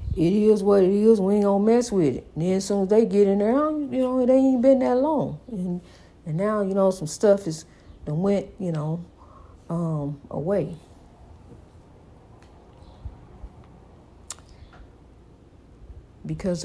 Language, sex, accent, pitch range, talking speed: English, female, American, 165-240 Hz, 150 wpm